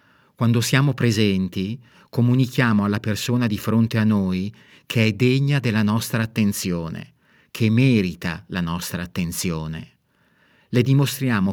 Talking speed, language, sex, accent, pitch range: 120 wpm, Italian, male, native, 100-125 Hz